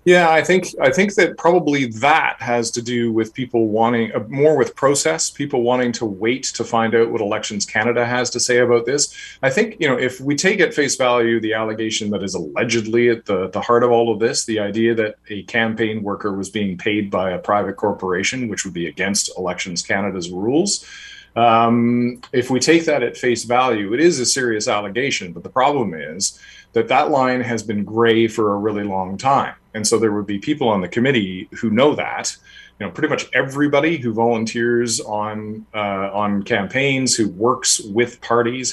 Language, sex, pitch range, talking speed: English, male, 105-125 Hz, 205 wpm